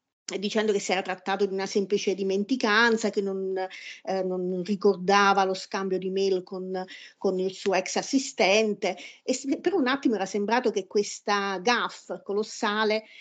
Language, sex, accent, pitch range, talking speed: Italian, female, native, 195-235 Hz, 155 wpm